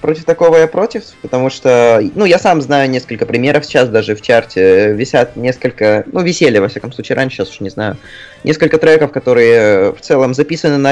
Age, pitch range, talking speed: 20-39, 120-150 Hz, 190 wpm